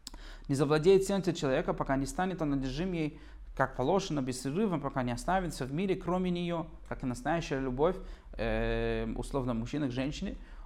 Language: Russian